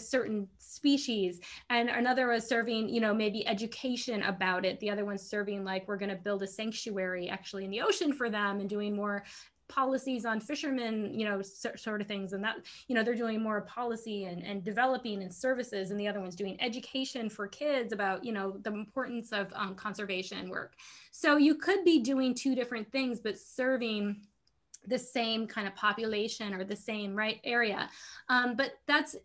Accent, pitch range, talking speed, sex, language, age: American, 205-265 Hz, 190 wpm, female, English, 20-39